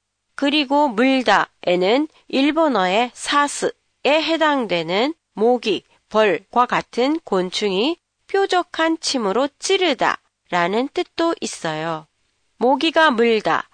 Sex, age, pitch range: female, 40-59, 200-300 Hz